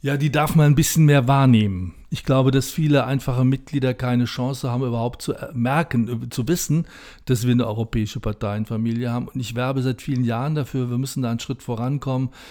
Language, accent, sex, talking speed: German, German, male, 195 wpm